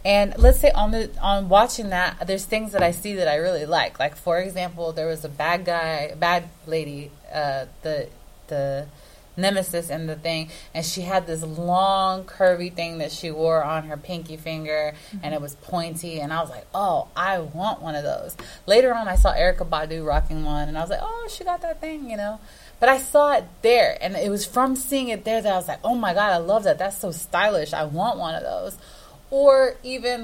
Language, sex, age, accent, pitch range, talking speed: English, female, 20-39, American, 165-215 Hz, 225 wpm